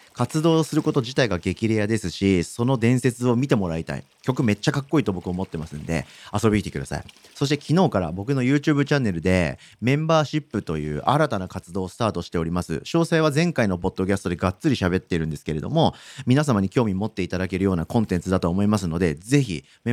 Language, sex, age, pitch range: Japanese, male, 40-59, 90-130 Hz